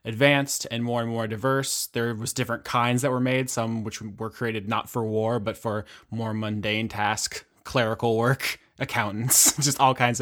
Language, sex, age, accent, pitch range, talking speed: English, male, 20-39, American, 110-125 Hz, 180 wpm